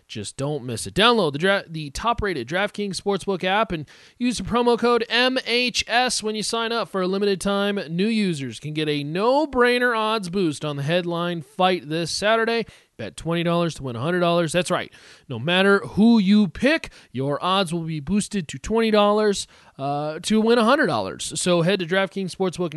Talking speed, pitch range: 180 wpm, 160-215 Hz